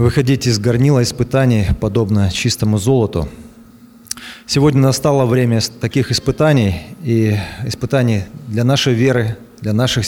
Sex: male